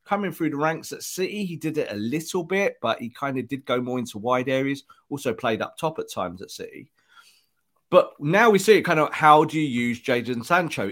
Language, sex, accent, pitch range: English, male, British, 120-165 Hz